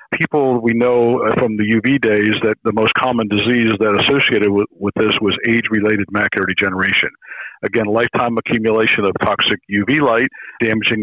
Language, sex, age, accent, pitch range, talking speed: English, male, 50-69, American, 105-120 Hz, 160 wpm